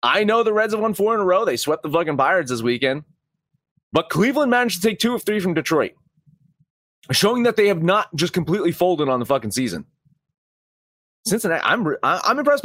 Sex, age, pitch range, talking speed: male, 30-49, 135-190 Hz, 205 wpm